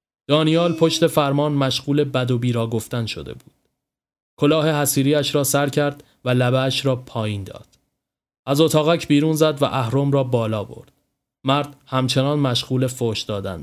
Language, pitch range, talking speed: Persian, 125-145 Hz, 145 wpm